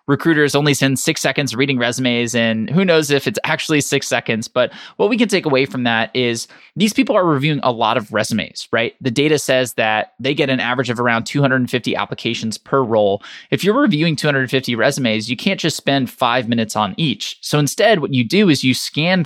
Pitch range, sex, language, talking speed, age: 120-155 Hz, male, English, 210 wpm, 20-39